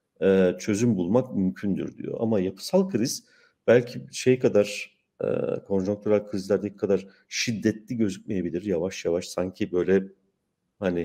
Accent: native